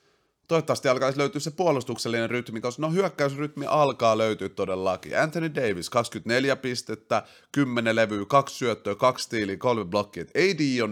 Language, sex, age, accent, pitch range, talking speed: Finnish, male, 30-49, native, 95-145 Hz, 145 wpm